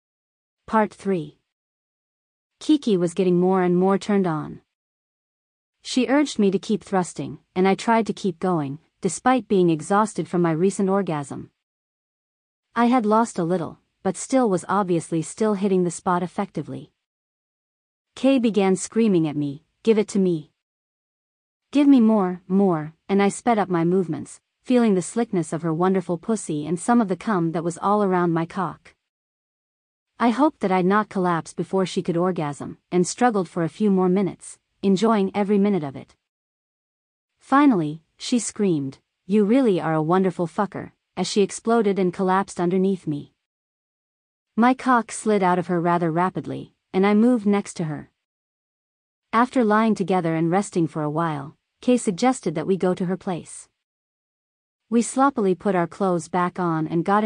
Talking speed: 165 wpm